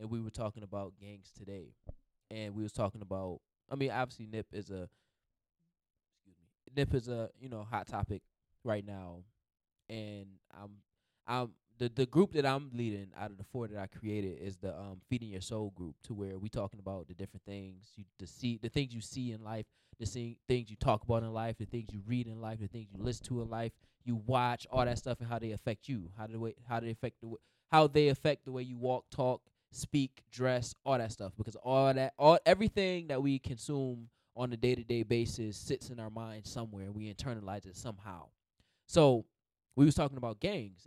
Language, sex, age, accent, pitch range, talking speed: English, male, 20-39, American, 100-130 Hz, 220 wpm